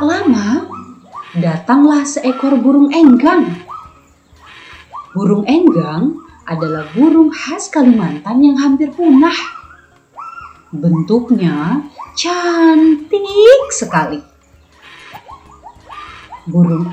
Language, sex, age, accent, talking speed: Indonesian, female, 30-49, native, 65 wpm